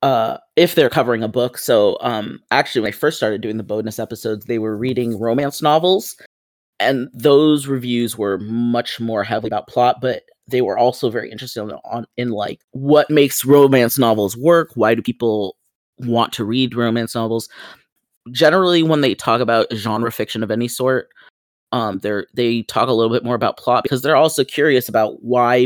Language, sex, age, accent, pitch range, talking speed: English, male, 30-49, American, 110-135 Hz, 185 wpm